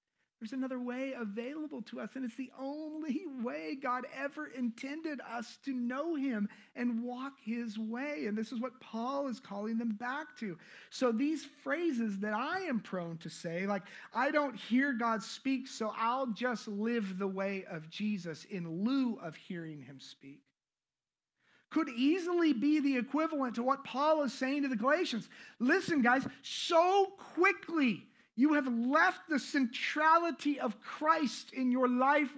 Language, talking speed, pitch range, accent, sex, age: English, 165 wpm, 220-285 Hz, American, male, 40-59